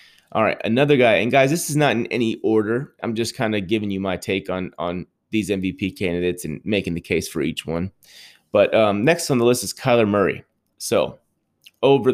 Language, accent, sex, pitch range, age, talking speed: English, American, male, 95-115 Hz, 30-49, 215 wpm